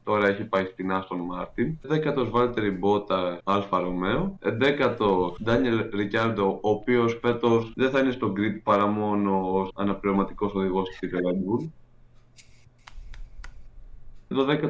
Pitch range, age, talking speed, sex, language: 95-115 Hz, 20-39, 110 wpm, male, Greek